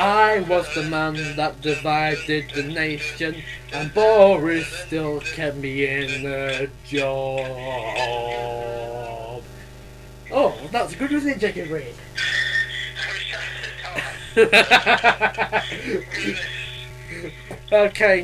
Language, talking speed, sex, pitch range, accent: English, 80 wpm, male, 125-180 Hz, British